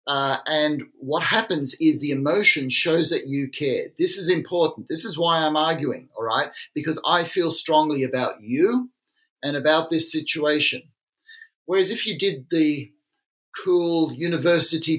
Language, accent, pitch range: English, Australian, 145-195 Hz